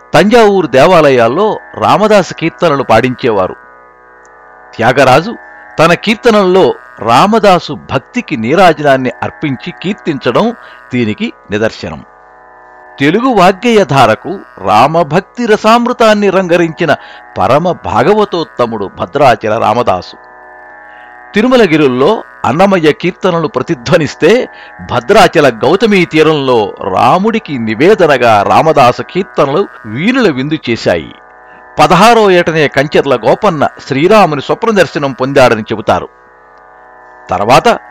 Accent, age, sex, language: native, 60-79, male, Telugu